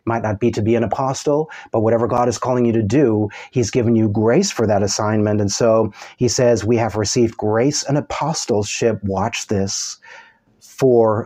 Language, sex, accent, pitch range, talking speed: English, male, American, 110-125 Hz, 185 wpm